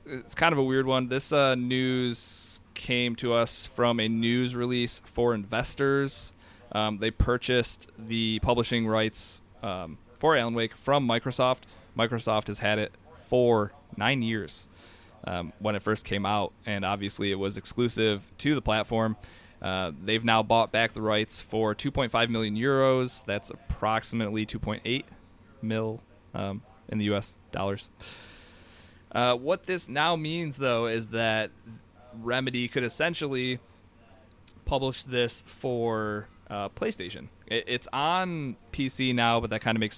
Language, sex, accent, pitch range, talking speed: English, male, American, 105-120 Hz, 145 wpm